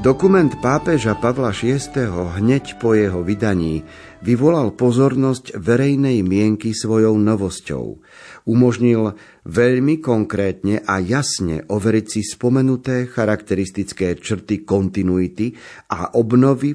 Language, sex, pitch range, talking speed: Slovak, male, 100-125 Hz, 95 wpm